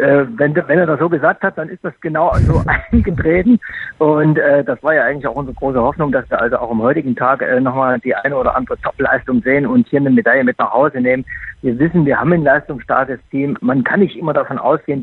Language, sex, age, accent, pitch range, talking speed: German, male, 50-69, German, 135-165 Hz, 240 wpm